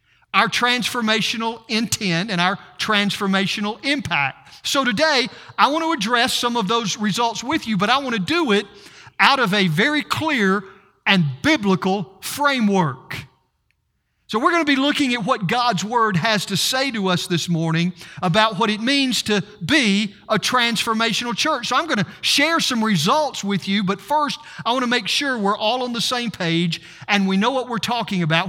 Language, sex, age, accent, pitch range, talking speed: English, male, 50-69, American, 180-250 Hz, 185 wpm